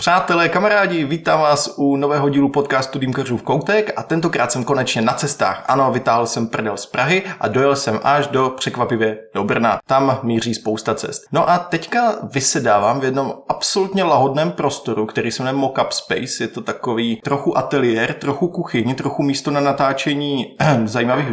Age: 20-39